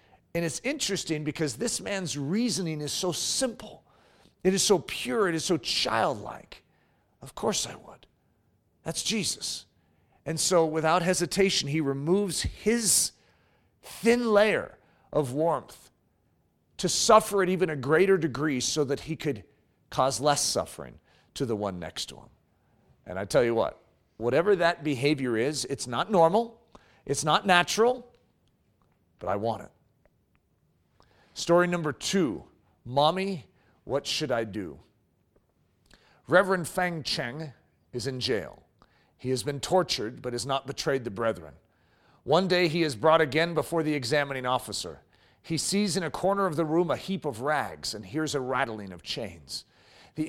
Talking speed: 150 wpm